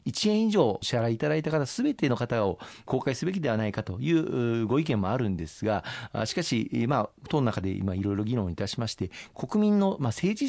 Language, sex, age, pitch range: Japanese, male, 40-59, 95-125 Hz